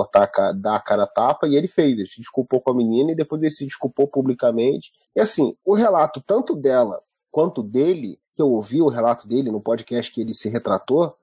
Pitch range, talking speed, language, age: 140-220 Hz, 210 wpm, Portuguese, 30-49